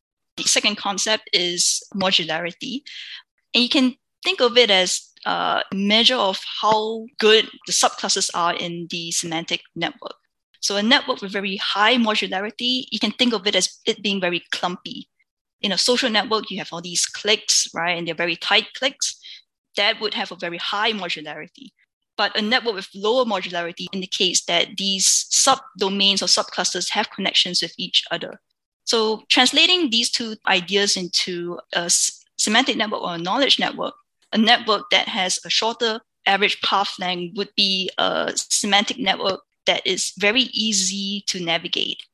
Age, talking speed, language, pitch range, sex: 10-29, 160 wpm, English, 180-225 Hz, female